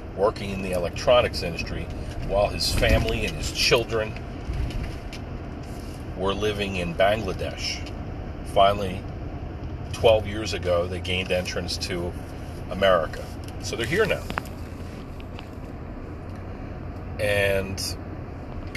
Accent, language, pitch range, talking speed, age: American, English, 90-100 Hz, 95 wpm, 40-59